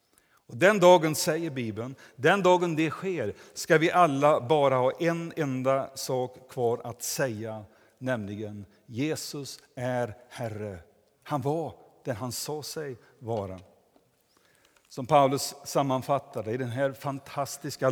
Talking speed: 125 wpm